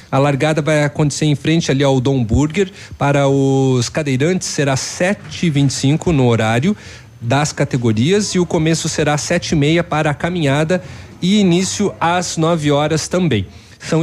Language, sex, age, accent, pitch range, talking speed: Portuguese, male, 40-59, Brazilian, 130-175 Hz, 165 wpm